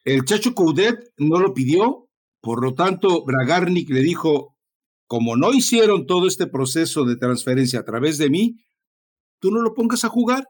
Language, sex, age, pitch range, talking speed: Spanish, male, 60-79, 130-195 Hz, 170 wpm